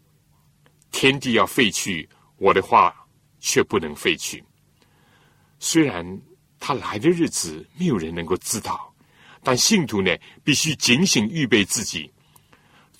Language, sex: Chinese, male